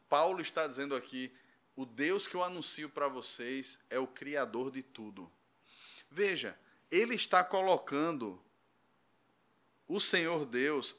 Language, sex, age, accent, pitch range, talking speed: Portuguese, male, 20-39, Brazilian, 155-205 Hz, 125 wpm